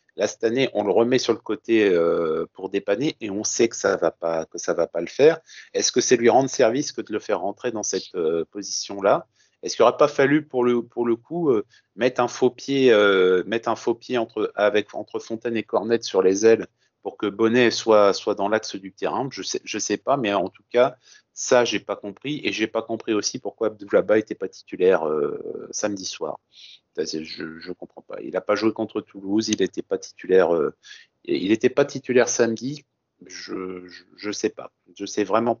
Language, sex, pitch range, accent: French, male, 105-155 Hz, French